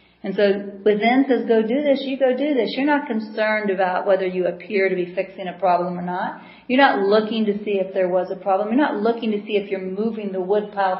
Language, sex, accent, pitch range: English, female, American, 180-225 Hz